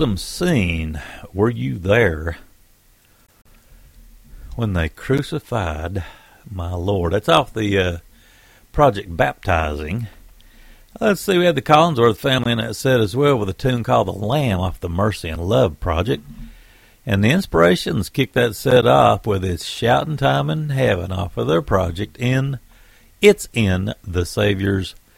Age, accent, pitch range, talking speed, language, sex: 60-79, American, 90-120 Hz, 150 wpm, English, male